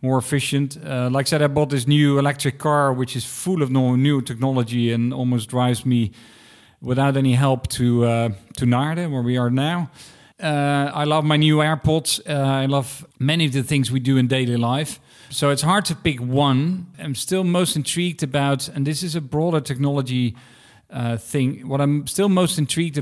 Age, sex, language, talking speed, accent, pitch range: 40-59, male, English, 200 wpm, Dutch, 125-150 Hz